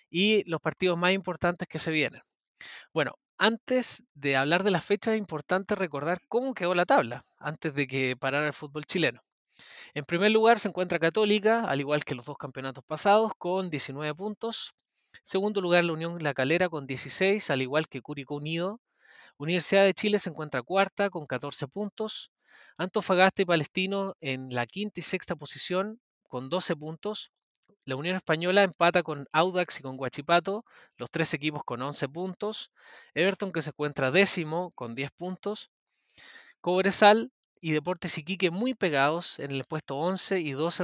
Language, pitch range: Spanish, 140-195 Hz